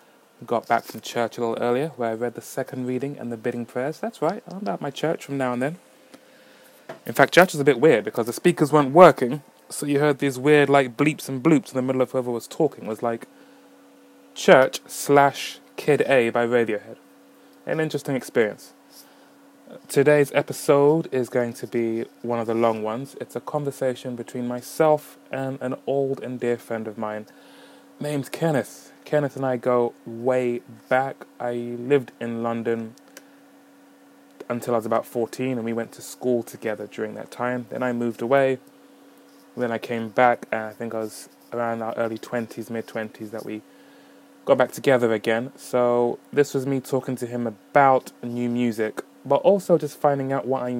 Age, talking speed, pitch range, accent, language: 20-39, 185 wpm, 115-140 Hz, British, English